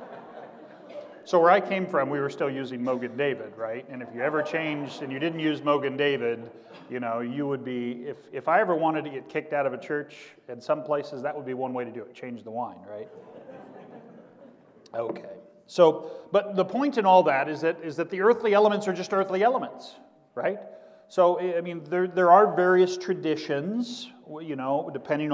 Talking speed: 205 wpm